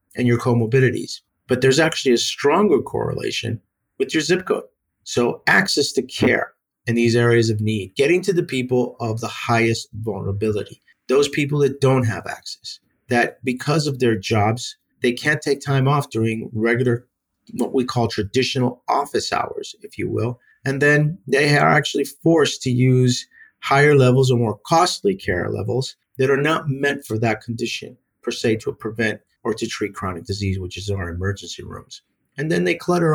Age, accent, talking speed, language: 50-69, American, 175 wpm, English